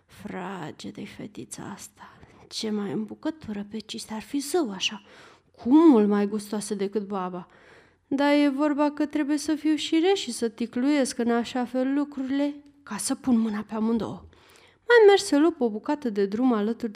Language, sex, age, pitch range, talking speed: Romanian, female, 30-49, 220-285 Hz, 175 wpm